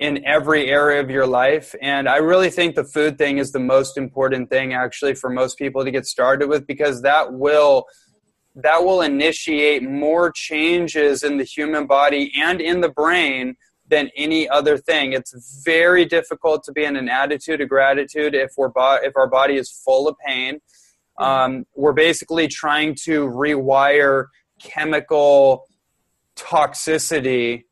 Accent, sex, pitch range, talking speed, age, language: American, male, 135-155 Hz, 160 wpm, 20-39, English